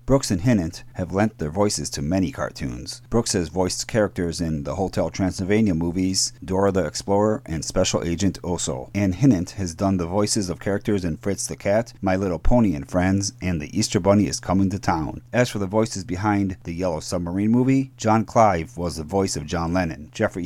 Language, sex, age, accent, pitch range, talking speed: English, male, 40-59, American, 90-110 Hz, 200 wpm